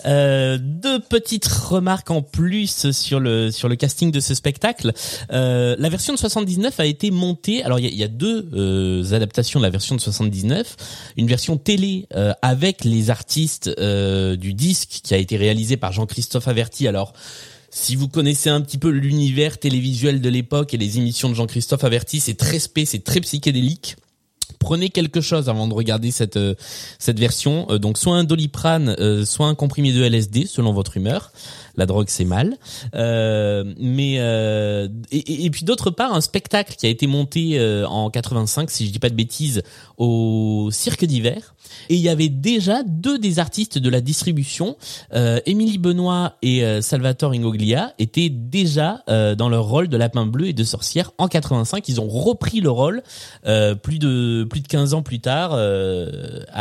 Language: French